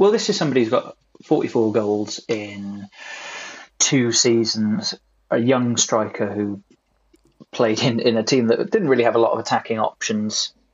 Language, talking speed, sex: English, 160 wpm, male